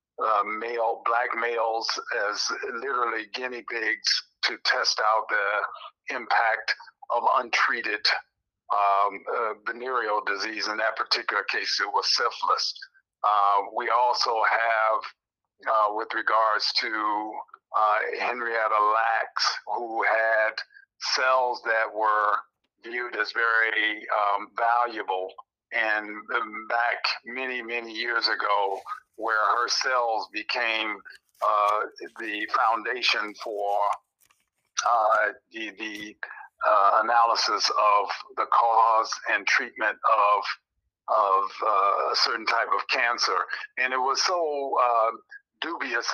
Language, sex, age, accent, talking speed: English, male, 50-69, American, 110 wpm